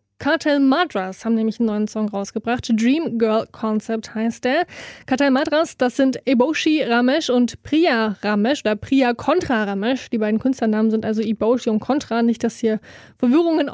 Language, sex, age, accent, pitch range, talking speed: German, female, 20-39, German, 230-275 Hz, 165 wpm